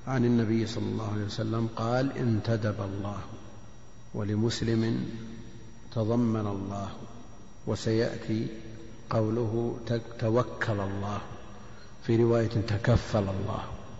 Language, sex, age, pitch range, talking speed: Arabic, male, 50-69, 110-120 Hz, 85 wpm